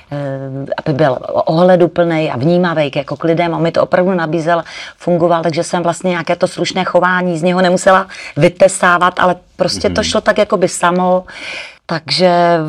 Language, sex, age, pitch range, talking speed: Czech, female, 40-59, 150-180 Hz, 155 wpm